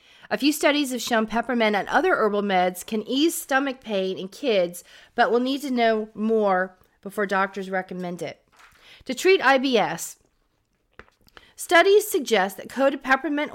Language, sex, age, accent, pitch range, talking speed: English, female, 40-59, American, 195-265 Hz, 155 wpm